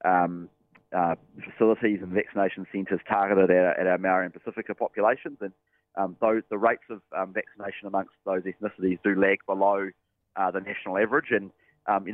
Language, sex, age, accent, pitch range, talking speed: English, male, 20-39, Australian, 95-110 Hz, 180 wpm